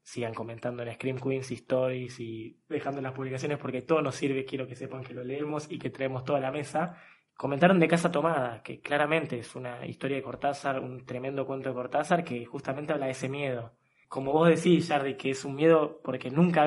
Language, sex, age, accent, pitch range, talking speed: Spanish, male, 20-39, Argentinian, 130-160 Hz, 210 wpm